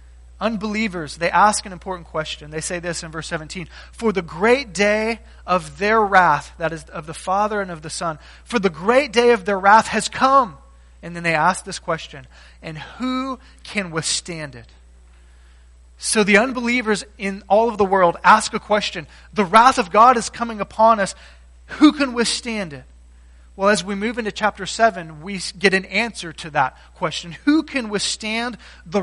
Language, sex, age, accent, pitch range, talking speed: English, male, 30-49, American, 155-215 Hz, 185 wpm